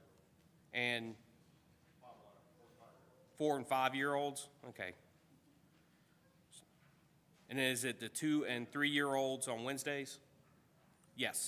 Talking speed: 80 wpm